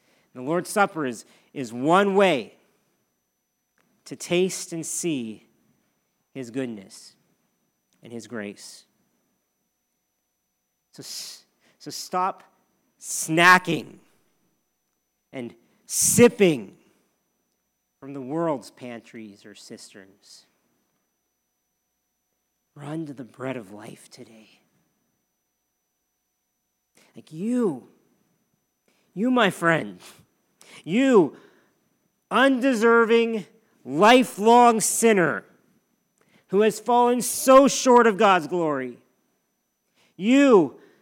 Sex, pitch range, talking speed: male, 140-225 Hz, 80 wpm